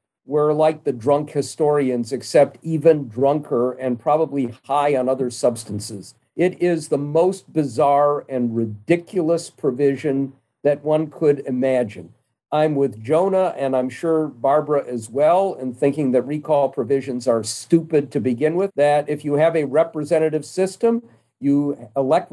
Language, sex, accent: English, male, American